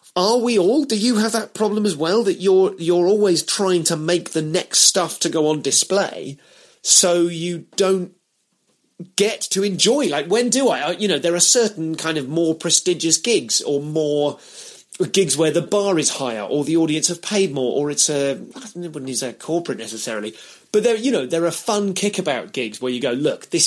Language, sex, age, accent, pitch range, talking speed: English, male, 30-49, British, 130-190 Hz, 205 wpm